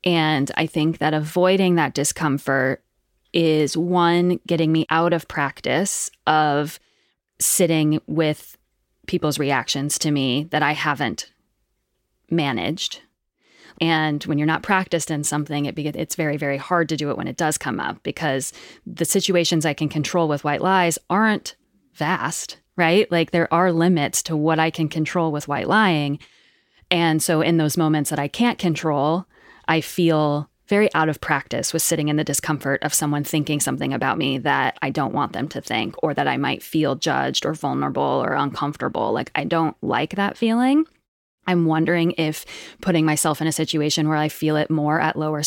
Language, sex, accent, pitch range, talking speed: English, female, American, 150-180 Hz, 180 wpm